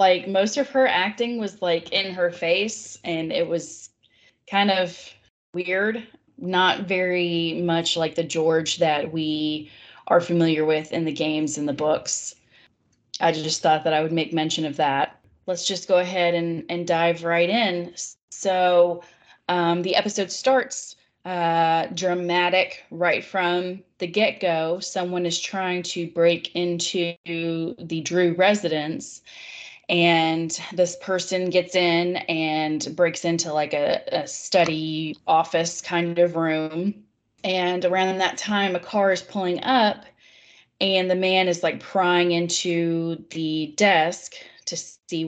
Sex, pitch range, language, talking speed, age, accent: female, 165-185 Hz, English, 145 wpm, 20-39, American